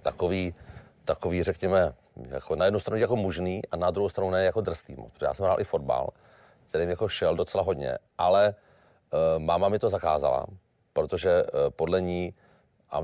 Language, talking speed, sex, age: Czech, 175 wpm, male, 40-59